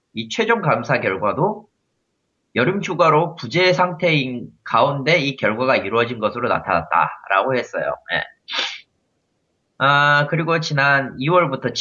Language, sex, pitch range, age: Korean, male, 110-165 Hz, 30-49